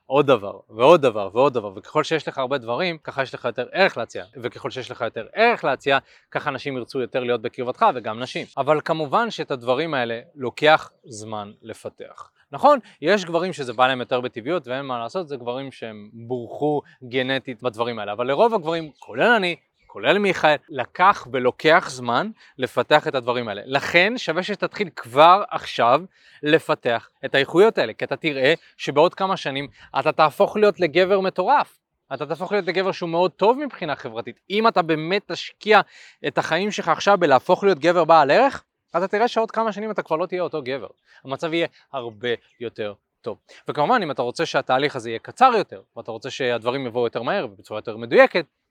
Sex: male